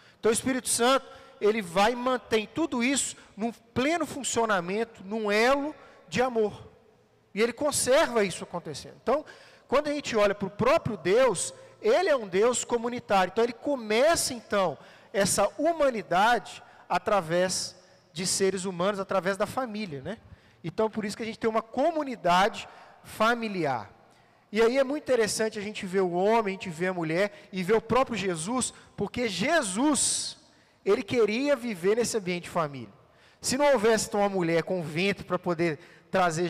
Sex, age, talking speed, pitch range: male, 40-59, 165 wpm, 195-265 Hz